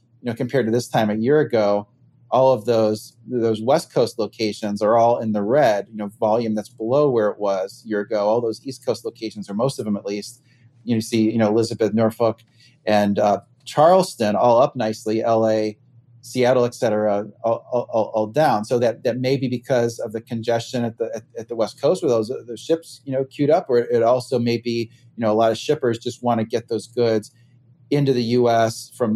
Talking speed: 225 wpm